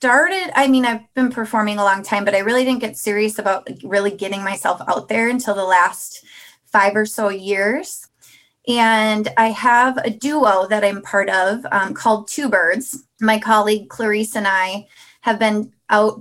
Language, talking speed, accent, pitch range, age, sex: English, 180 wpm, American, 200-235 Hz, 20-39, female